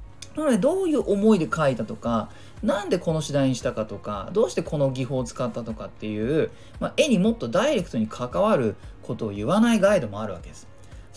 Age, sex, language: 20-39, male, Japanese